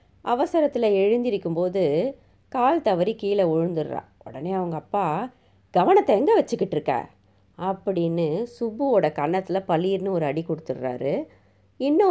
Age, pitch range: 30-49, 150-195 Hz